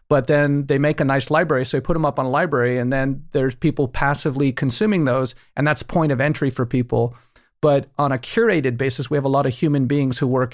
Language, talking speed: English, 245 wpm